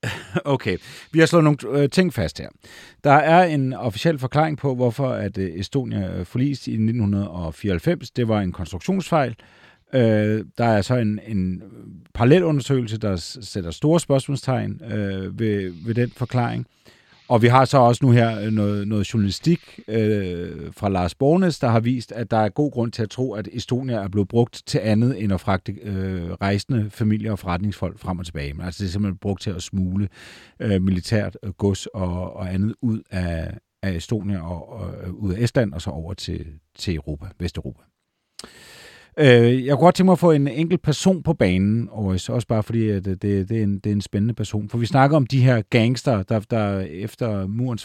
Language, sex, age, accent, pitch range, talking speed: Danish, male, 40-59, native, 100-130 Hz, 185 wpm